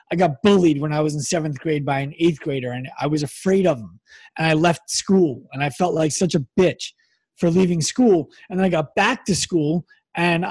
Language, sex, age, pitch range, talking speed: English, male, 30-49, 150-200 Hz, 235 wpm